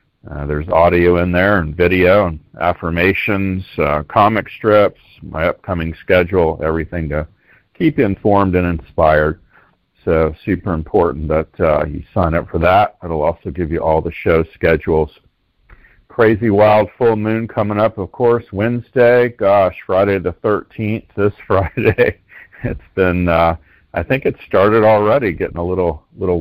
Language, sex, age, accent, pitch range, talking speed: English, male, 50-69, American, 80-100 Hz, 150 wpm